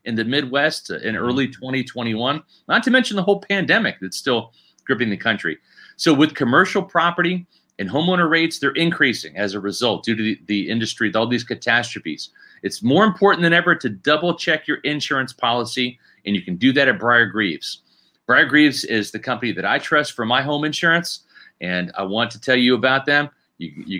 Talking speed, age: 195 wpm, 40-59